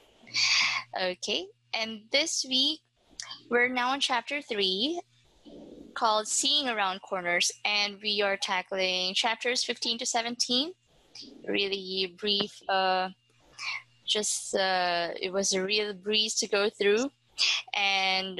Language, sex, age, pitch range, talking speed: English, female, 20-39, 190-240 Hz, 115 wpm